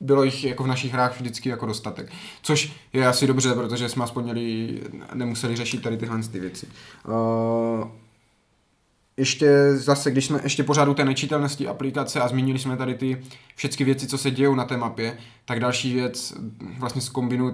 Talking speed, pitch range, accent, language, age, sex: 170 wpm, 115-145 Hz, native, Czech, 20-39, male